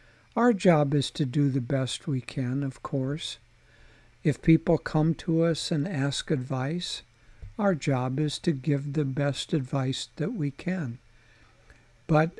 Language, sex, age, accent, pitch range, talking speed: English, male, 60-79, American, 130-160 Hz, 150 wpm